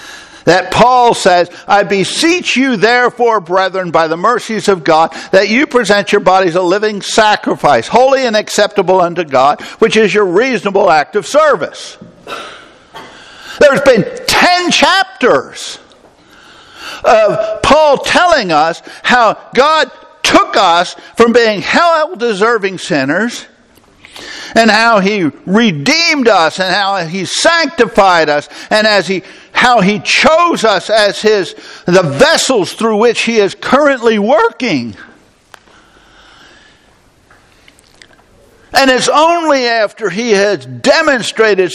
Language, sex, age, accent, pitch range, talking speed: English, male, 60-79, American, 195-265 Hz, 120 wpm